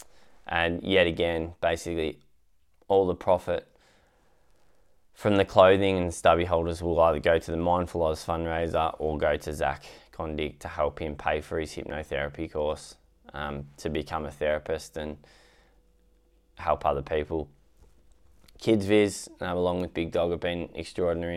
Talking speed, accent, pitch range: 145 wpm, Australian, 80-90 Hz